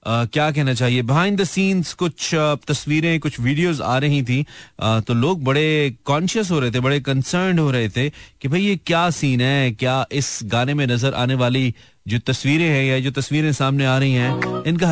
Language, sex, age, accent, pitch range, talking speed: Hindi, male, 30-49, native, 120-160 Hz, 205 wpm